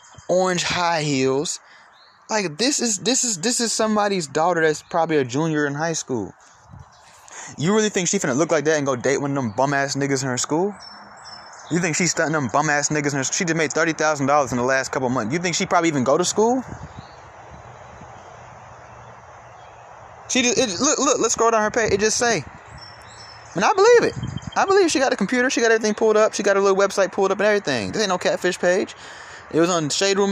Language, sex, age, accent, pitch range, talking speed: English, male, 20-39, American, 150-220 Hz, 225 wpm